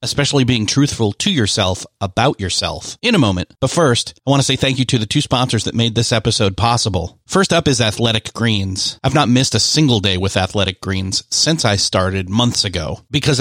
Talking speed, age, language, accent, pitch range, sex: 210 wpm, 30-49, English, American, 110-135 Hz, male